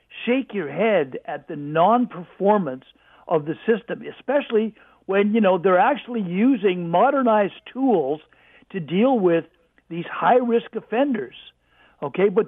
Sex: male